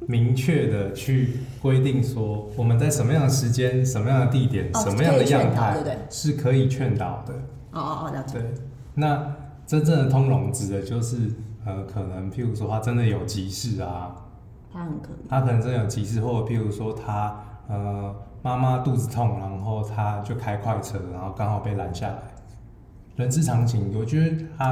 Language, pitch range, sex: Chinese, 105-130 Hz, male